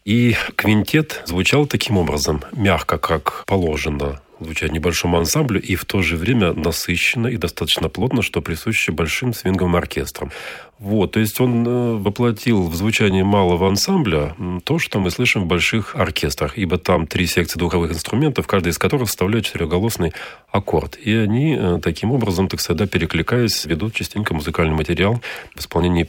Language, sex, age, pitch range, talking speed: Russian, male, 40-59, 85-110 Hz, 150 wpm